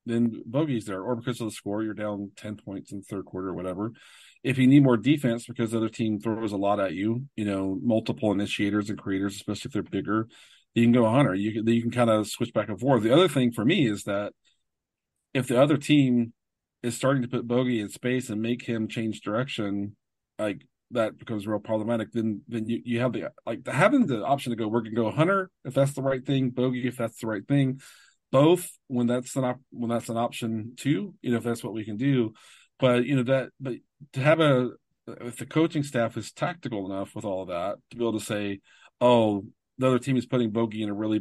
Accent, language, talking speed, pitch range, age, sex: American, English, 240 wpm, 105-130 Hz, 40-59, male